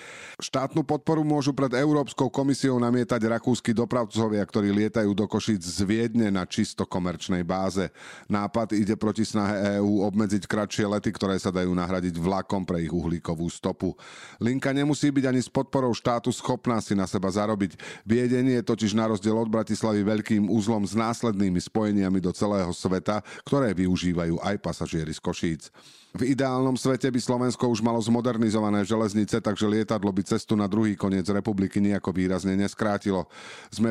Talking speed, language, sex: 160 wpm, Slovak, male